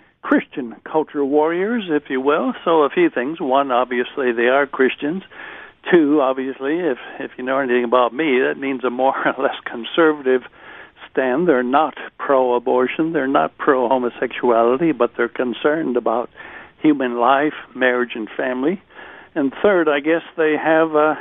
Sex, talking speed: male, 150 wpm